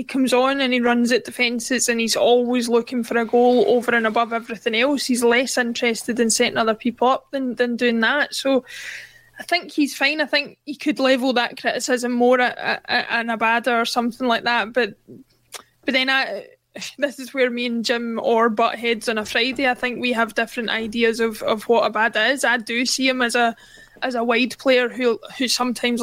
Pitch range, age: 235-265 Hz, 20-39